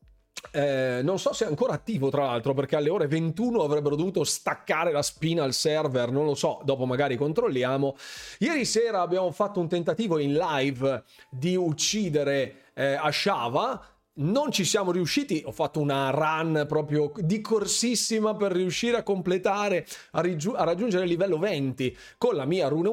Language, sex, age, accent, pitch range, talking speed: Italian, male, 30-49, native, 135-190 Hz, 160 wpm